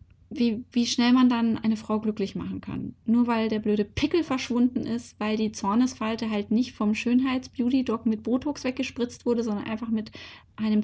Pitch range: 200-235 Hz